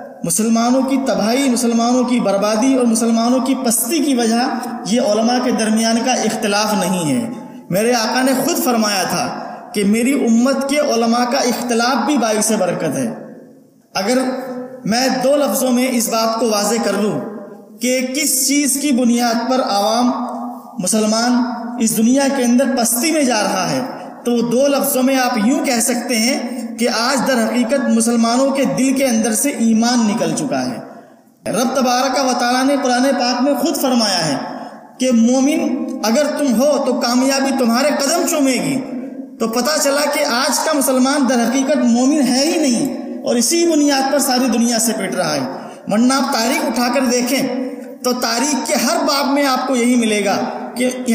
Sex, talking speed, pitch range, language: male, 175 wpm, 235-270 Hz, Urdu